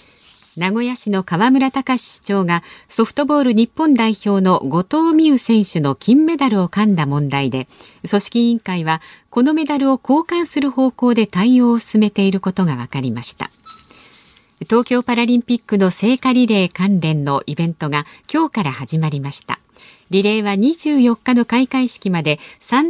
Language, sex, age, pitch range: Japanese, female, 50-69, 170-245 Hz